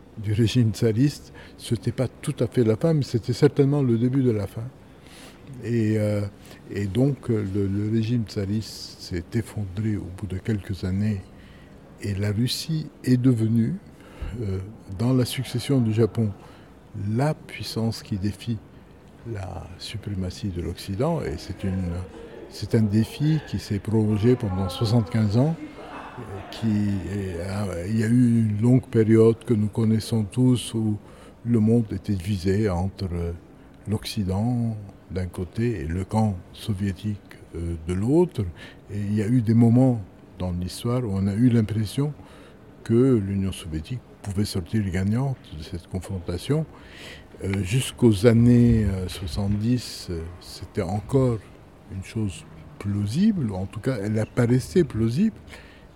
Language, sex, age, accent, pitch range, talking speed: French, male, 60-79, French, 95-120 Hz, 140 wpm